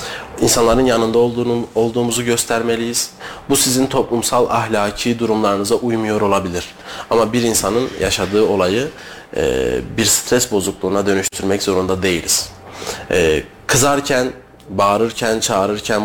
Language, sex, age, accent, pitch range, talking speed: Turkish, male, 30-49, native, 100-120 Hz, 95 wpm